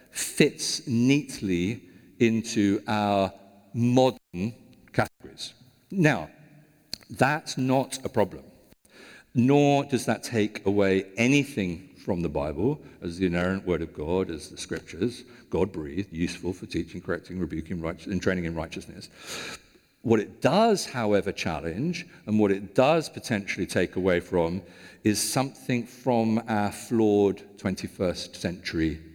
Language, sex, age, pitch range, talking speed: English, male, 50-69, 95-130 Hz, 120 wpm